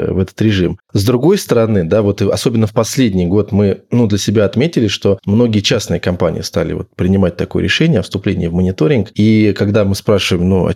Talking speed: 200 wpm